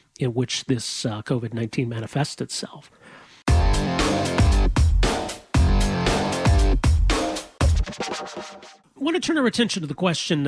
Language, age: English, 40-59